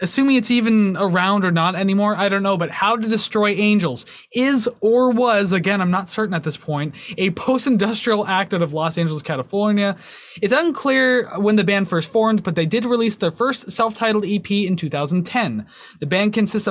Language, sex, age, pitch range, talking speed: English, male, 20-39, 180-225 Hz, 190 wpm